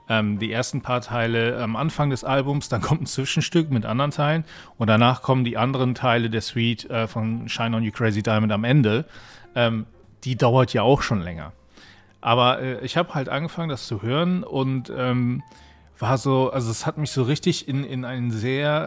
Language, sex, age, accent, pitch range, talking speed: German, male, 40-59, German, 115-135 Hz, 200 wpm